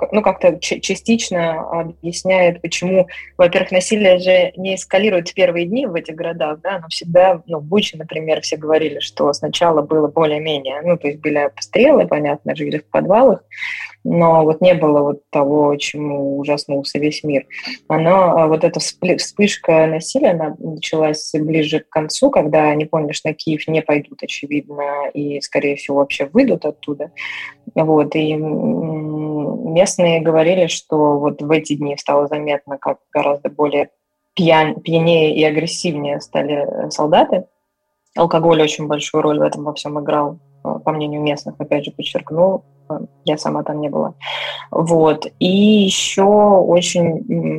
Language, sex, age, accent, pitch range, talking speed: Russian, female, 20-39, native, 150-175 Hz, 145 wpm